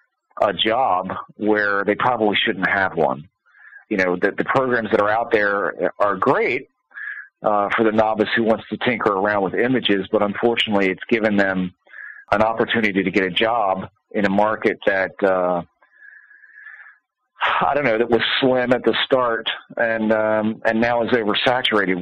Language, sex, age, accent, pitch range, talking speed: English, male, 40-59, American, 95-115 Hz, 170 wpm